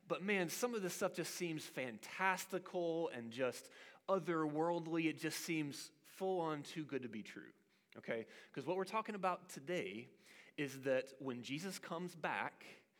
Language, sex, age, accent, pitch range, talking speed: English, male, 30-49, American, 140-185 Hz, 155 wpm